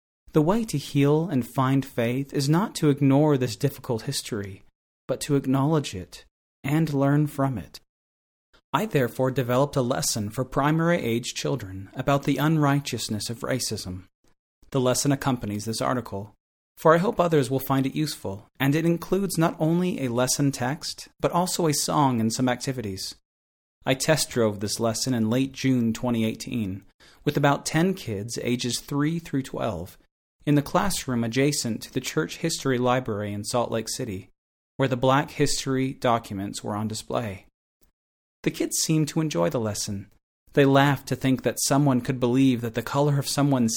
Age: 30-49